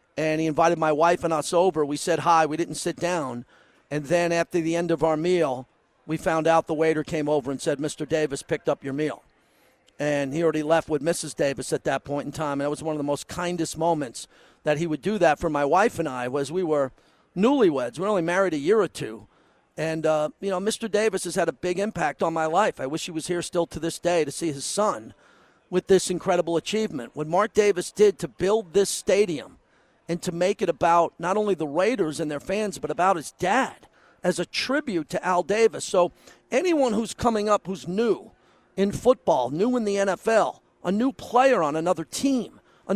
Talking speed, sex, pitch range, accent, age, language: 225 wpm, male, 155-200 Hz, American, 50-69, English